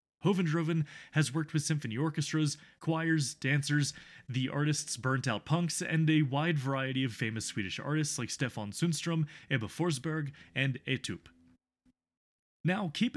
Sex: male